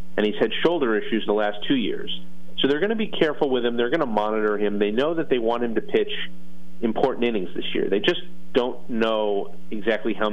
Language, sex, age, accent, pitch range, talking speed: English, male, 40-59, American, 95-120 Hz, 240 wpm